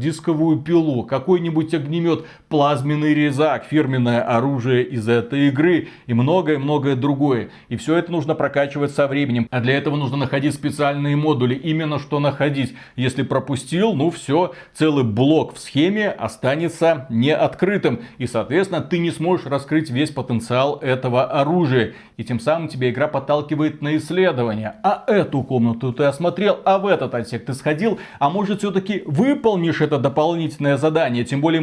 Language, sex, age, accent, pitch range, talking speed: Russian, male, 30-49, native, 135-160 Hz, 150 wpm